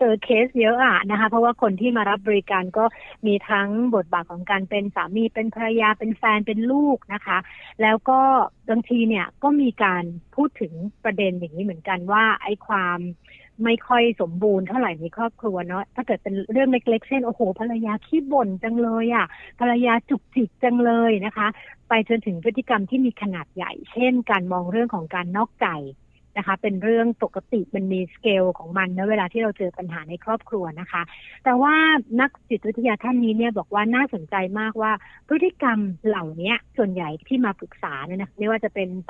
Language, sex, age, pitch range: Thai, female, 60-79, 190-235 Hz